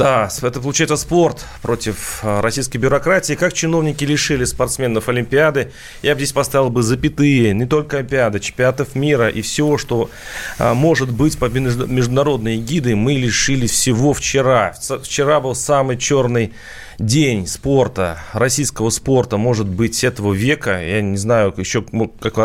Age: 30-49